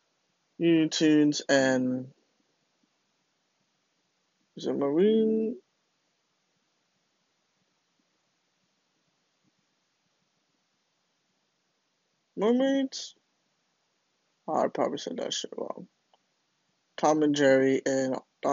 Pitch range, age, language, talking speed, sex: 135-160 Hz, 20-39, English, 50 wpm, male